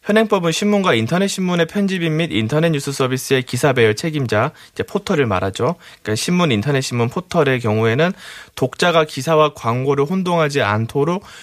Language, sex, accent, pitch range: Korean, male, native, 120-170 Hz